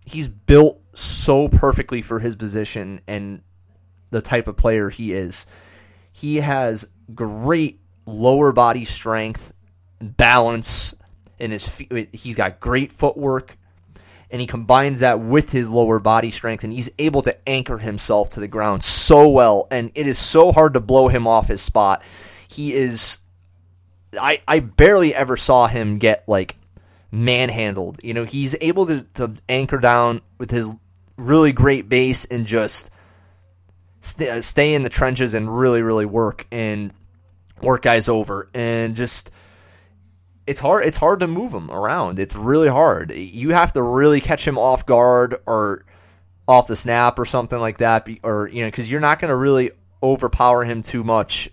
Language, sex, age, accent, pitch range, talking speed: English, male, 20-39, American, 95-125 Hz, 165 wpm